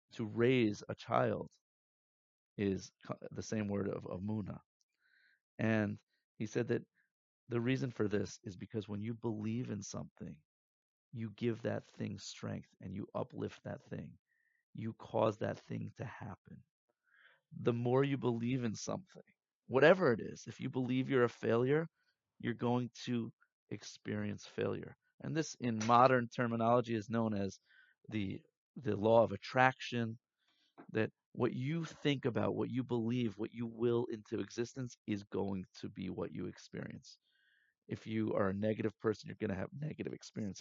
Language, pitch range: English, 105-125 Hz